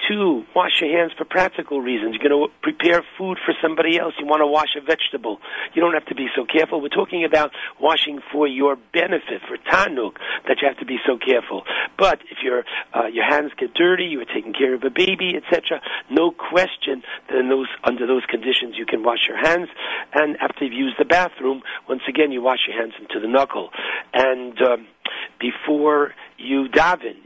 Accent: American